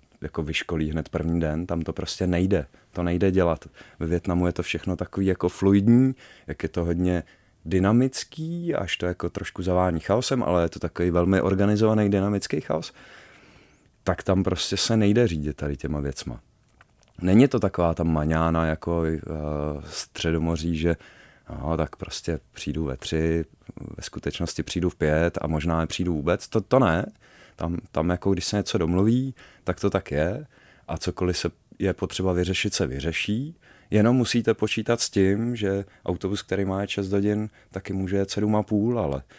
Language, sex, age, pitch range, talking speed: Czech, male, 30-49, 85-105 Hz, 170 wpm